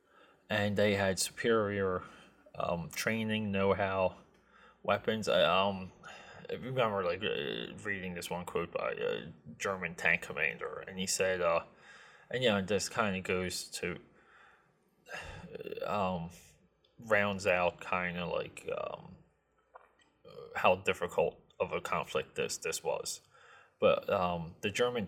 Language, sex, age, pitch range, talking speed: English, male, 20-39, 90-110 Hz, 130 wpm